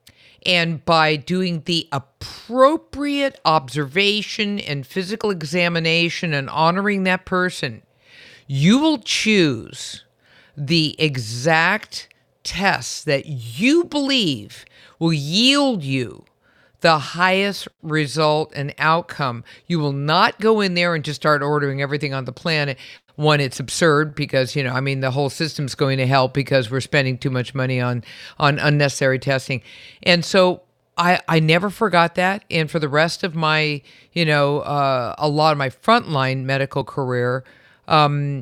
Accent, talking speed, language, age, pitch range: American, 145 wpm, English, 50-69, 135-180 Hz